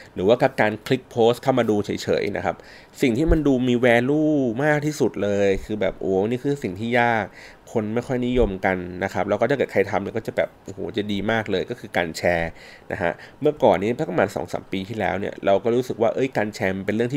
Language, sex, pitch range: Thai, male, 95-120 Hz